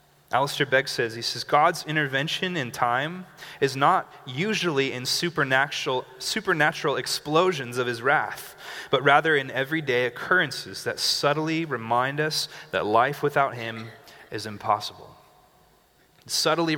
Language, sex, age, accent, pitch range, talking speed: English, male, 30-49, American, 135-170 Hz, 125 wpm